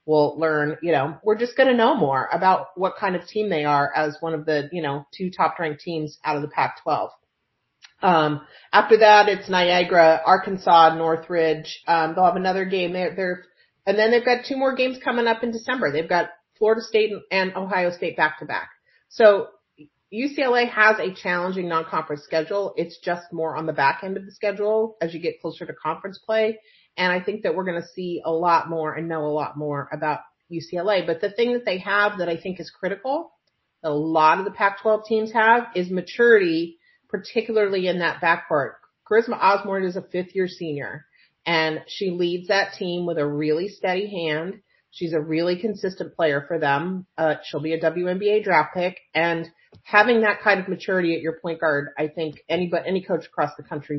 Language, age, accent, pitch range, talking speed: English, 40-59, American, 160-205 Hz, 200 wpm